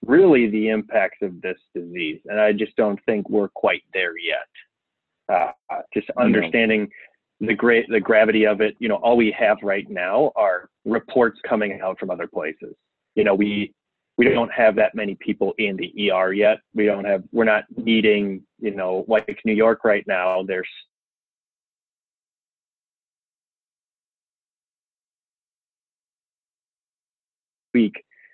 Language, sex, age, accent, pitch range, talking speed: English, male, 30-49, American, 100-115 Hz, 140 wpm